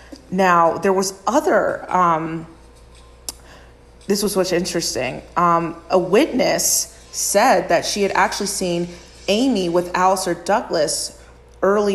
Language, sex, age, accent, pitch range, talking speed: English, female, 30-49, American, 165-205 Hz, 115 wpm